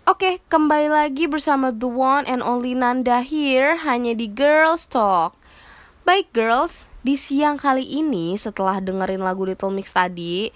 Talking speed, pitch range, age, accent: 150 wpm, 205-280 Hz, 20-39, native